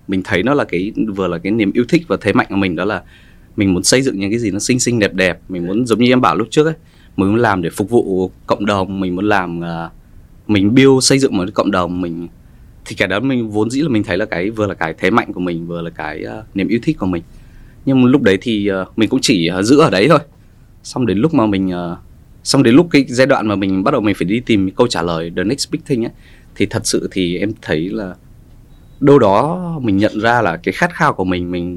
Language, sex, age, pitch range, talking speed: Vietnamese, male, 20-39, 95-125 Hz, 280 wpm